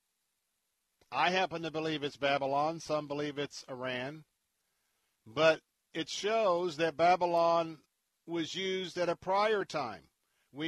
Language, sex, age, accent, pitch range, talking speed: English, male, 50-69, American, 135-165 Hz, 125 wpm